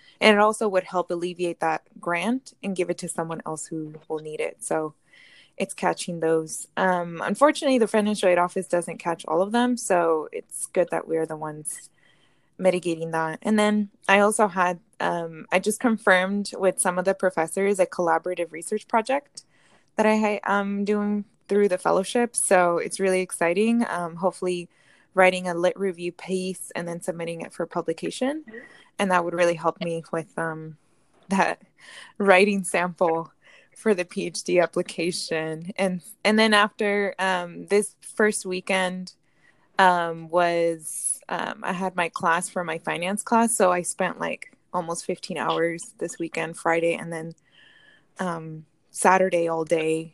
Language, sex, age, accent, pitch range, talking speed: English, female, 20-39, American, 165-200 Hz, 160 wpm